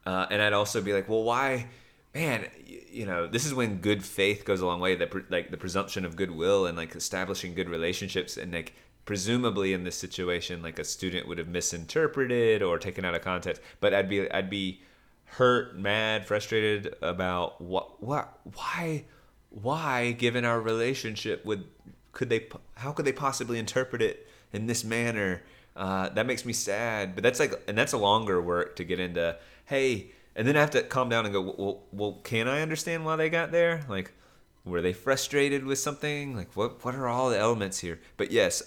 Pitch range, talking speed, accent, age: 90-120 Hz, 200 wpm, American, 30-49